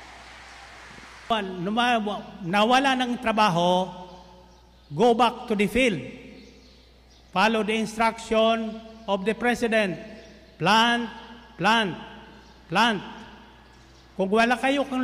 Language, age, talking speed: Filipino, 50-69, 85 wpm